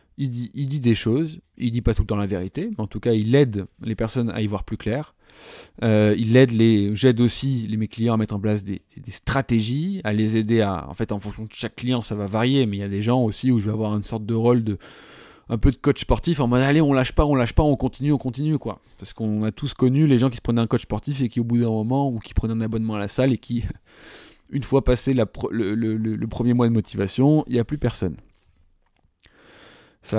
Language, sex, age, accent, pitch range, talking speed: French, male, 20-39, French, 110-135 Hz, 260 wpm